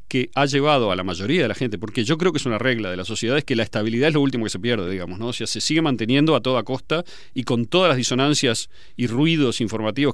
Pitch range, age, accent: 105-135 Hz, 40-59, Argentinian